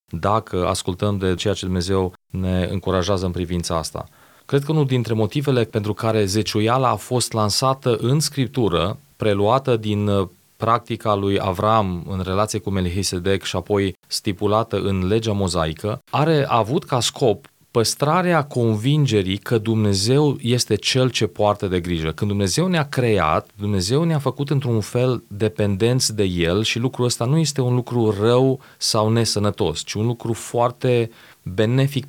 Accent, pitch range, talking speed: native, 100-120 Hz, 150 wpm